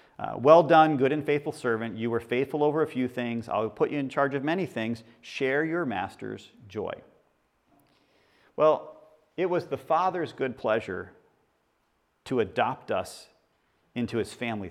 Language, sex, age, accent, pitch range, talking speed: English, male, 40-59, American, 110-145 Hz, 160 wpm